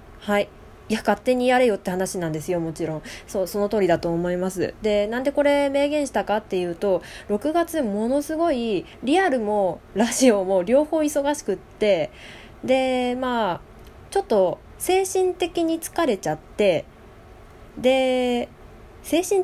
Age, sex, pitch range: 20-39, female, 210-320 Hz